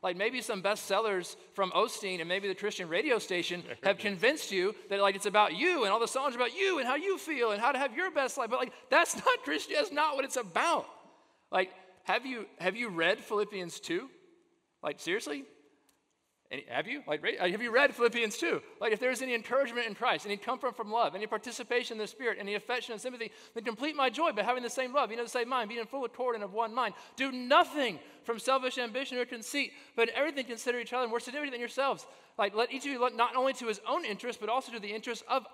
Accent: American